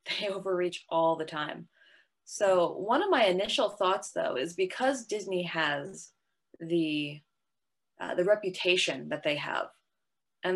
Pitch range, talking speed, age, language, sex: 170-210 Hz, 135 wpm, 20-39, English, female